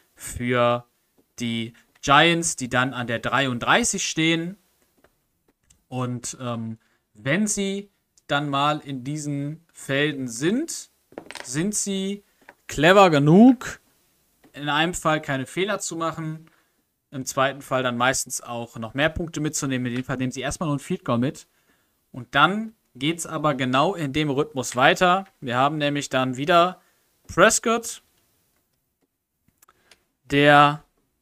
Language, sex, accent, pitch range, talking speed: German, male, German, 130-180 Hz, 130 wpm